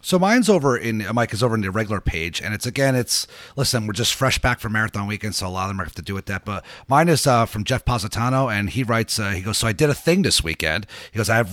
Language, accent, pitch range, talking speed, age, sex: English, American, 105-130 Hz, 295 wpm, 30-49, male